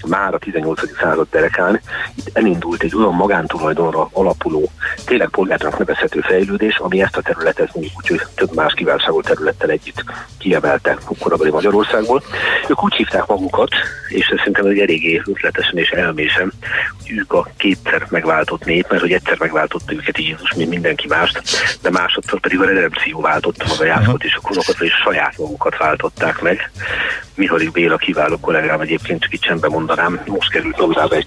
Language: Hungarian